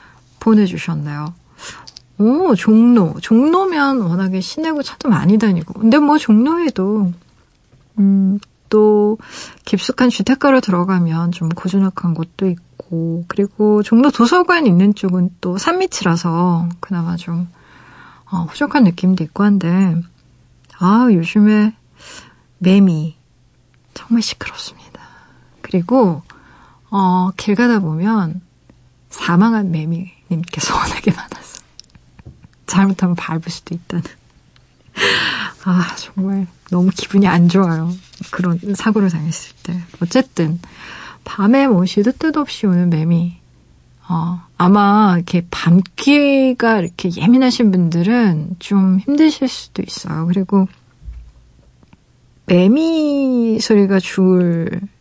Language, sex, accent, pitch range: Korean, female, native, 170-225 Hz